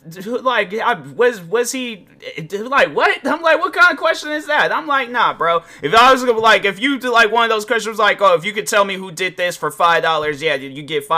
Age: 30-49